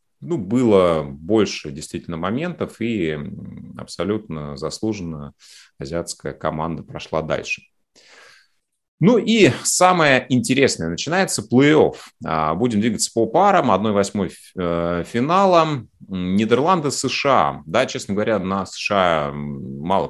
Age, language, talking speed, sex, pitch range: 30-49, Russian, 95 wpm, male, 80-110 Hz